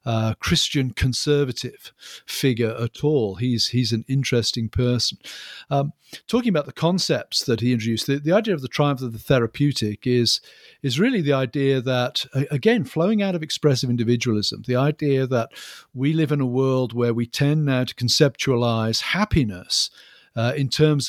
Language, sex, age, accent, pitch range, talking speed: English, male, 50-69, British, 120-150 Hz, 165 wpm